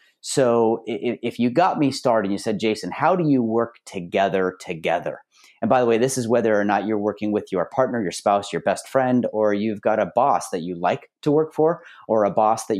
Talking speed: 235 wpm